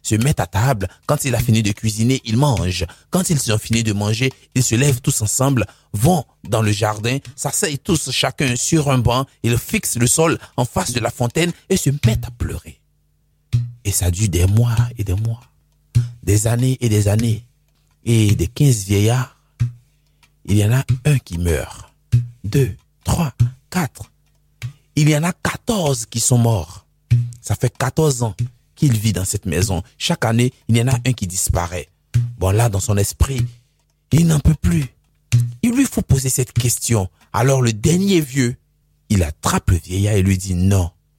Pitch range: 95-130 Hz